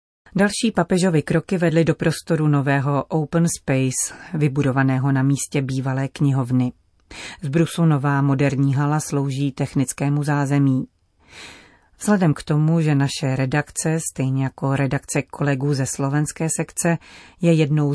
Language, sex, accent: Czech, female, native